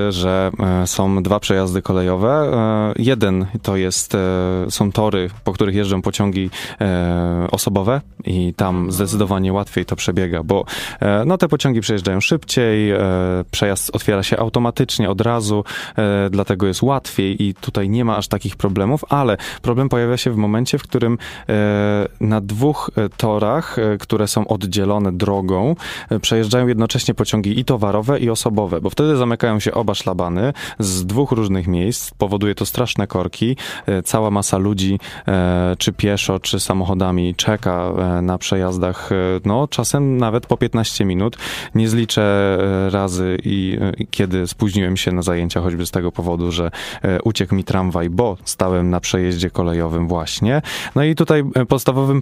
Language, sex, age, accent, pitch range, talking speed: Polish, male, 20-39, native, 95-115 Hz, 140 wpm